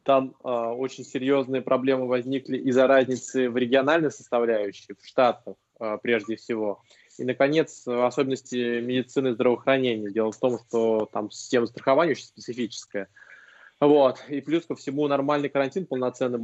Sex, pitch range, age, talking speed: male, 115-135 Hz, 20-39, 140 wpm